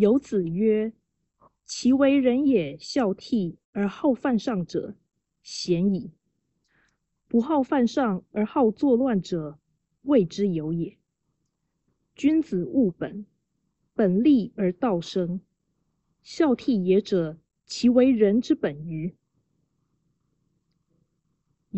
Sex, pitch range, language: female, 165-235 Hz, Chinese